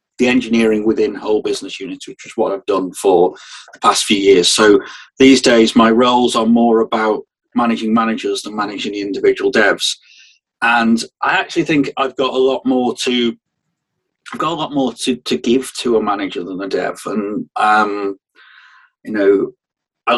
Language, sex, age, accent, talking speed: English, male, 40-59, British, 180 wpm